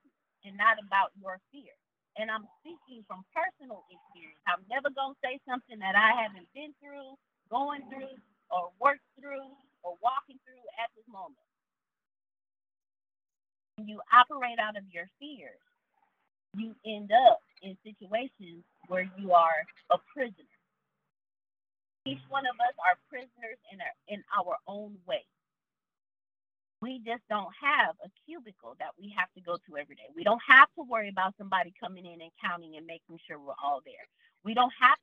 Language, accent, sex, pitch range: English, American, female, 190-275 Hz